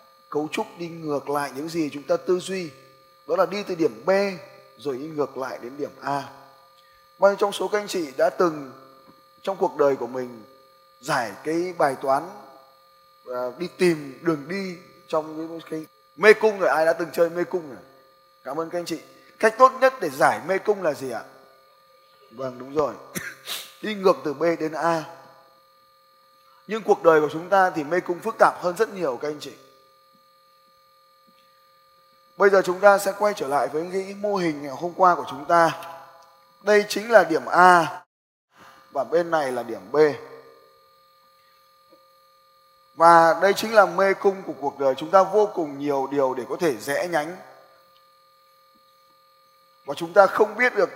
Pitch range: 135-185 Hz